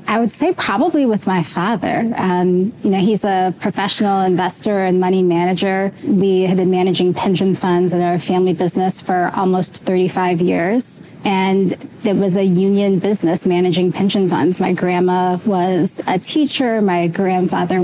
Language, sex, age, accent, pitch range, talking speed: English, female, 20-39, American, 180-210 Hz, 160 wpm